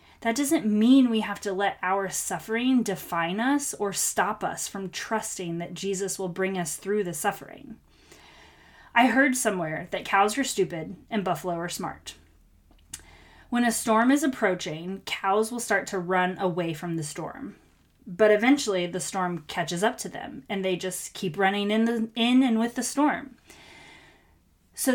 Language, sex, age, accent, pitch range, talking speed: English, female, 20-39, American, 180-225 Hz, 165 wpm